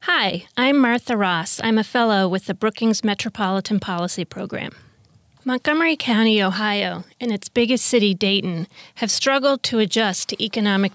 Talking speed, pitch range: 150 wpm, 190-225 Hz